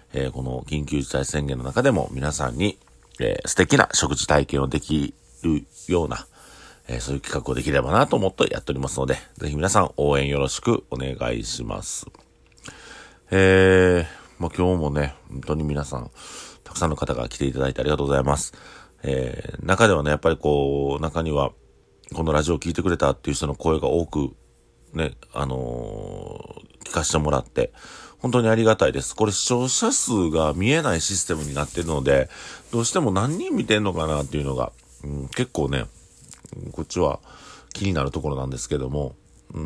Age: 40-59